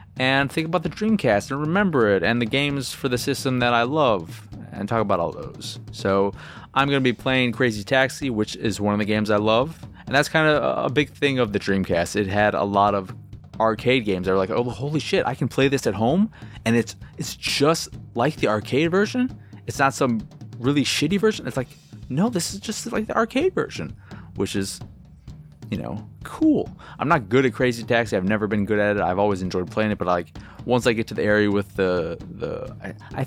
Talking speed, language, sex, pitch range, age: 225 wpm, English, male, 105-140 Hz, 20-39